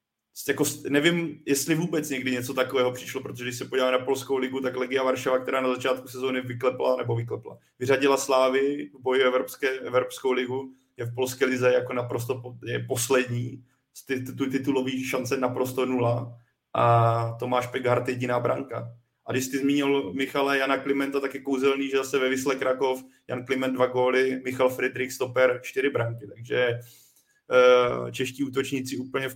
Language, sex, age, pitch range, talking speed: Czech, male, 30-49, 125-135 Hz, 165 wpm